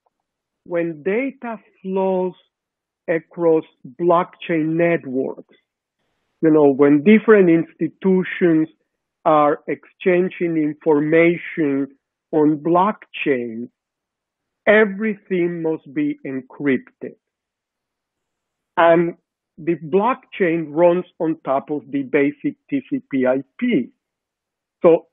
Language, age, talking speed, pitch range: English, 50-69, 75 wpm, 150-190 Hz